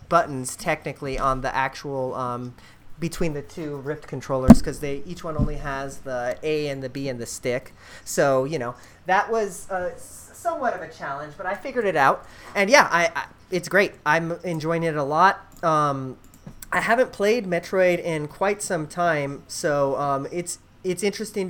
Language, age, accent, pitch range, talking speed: English, 30-49, American, 145-185 Hz, 180 wpm